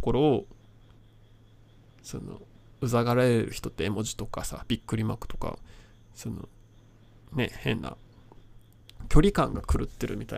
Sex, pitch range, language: male, 110-120 Hz, Japanese